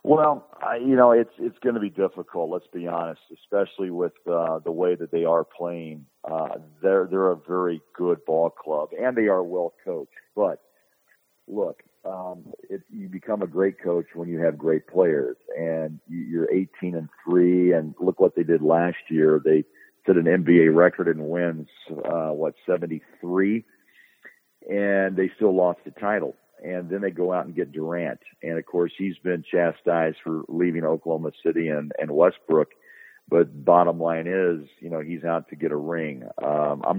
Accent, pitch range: American, 80-95 Hz